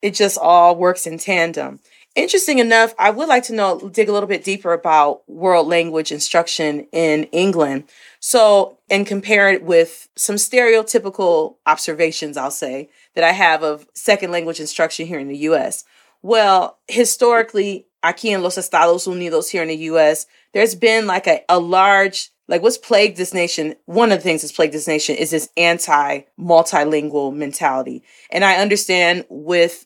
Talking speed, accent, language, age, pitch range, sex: 165 wpm, American, English, 30-49, 165-210 Hz, female